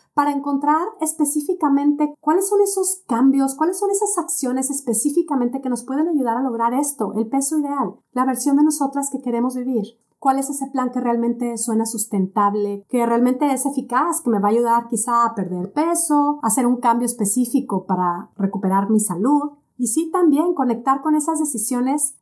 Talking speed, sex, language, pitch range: 180 wpm, female, Spanish, 225-295 Hz